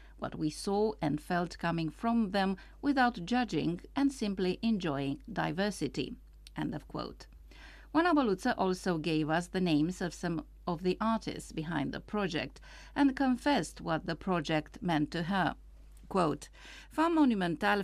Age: 50-69